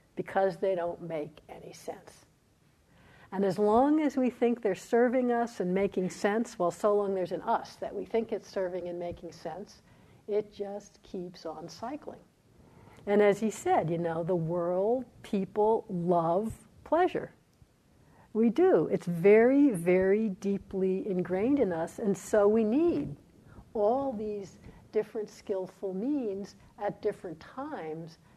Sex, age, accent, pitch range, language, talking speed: female, 60-79, American, 180-220 Hz, English, 145 wpm